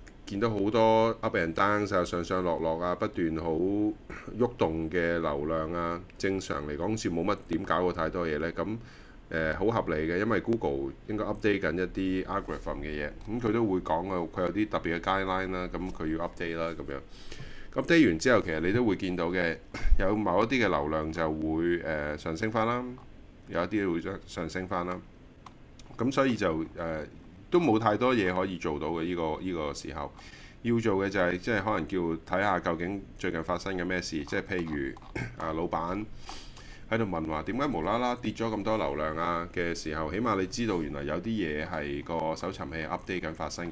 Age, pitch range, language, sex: 30-49, 80-100 Hz, Chinese, male